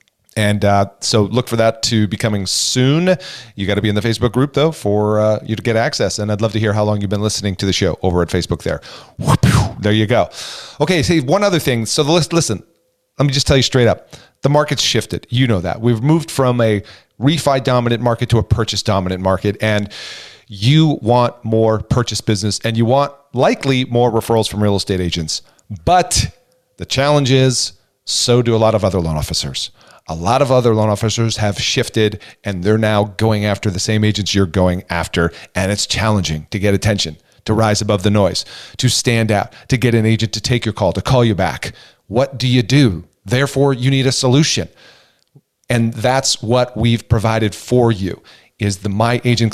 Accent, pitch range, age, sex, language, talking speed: American, 105-130 Hz, 40-59, male, English, 210 wpm